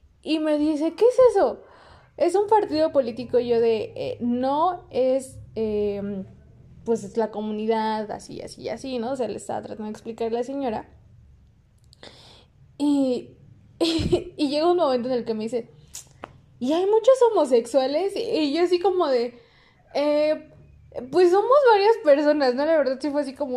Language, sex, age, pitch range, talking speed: Spanish, female, 20-39, 220-310 Hz, 170 wpm